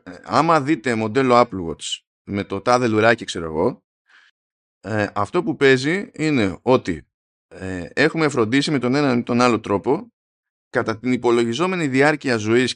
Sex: male